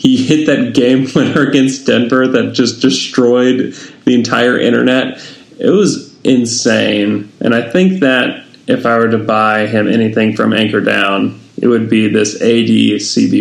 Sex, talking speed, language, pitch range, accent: male, 155 wpm, English, 110-125 Hz, American